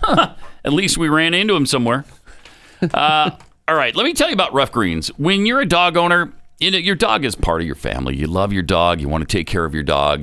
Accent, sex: American, male